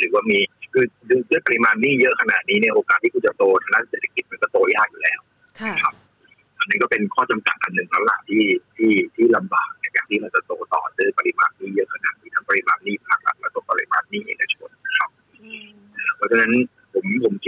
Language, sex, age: Thai, male, 30-49